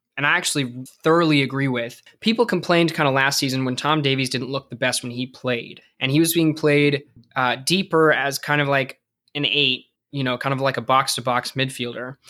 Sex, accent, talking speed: male, American, 220 wpm